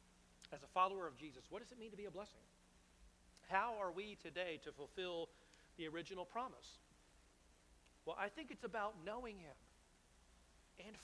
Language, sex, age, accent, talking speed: English, male, 40-59, American, 165 wpm